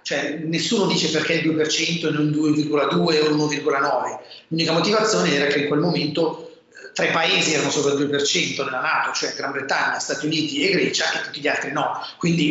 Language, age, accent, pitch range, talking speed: Italian, 30-49, native, 150-205 Hz, 190 wpm